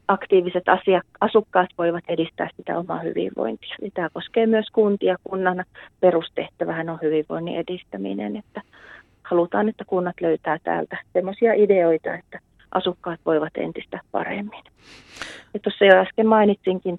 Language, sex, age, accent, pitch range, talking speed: Finnish, female, 30-49, native, 165-190 Hz, 125 wpm